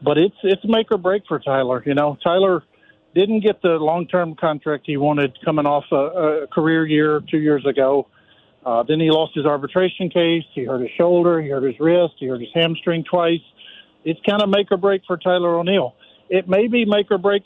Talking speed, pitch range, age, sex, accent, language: 215 wpm, 145-180 Hz, 50-69, male, American, English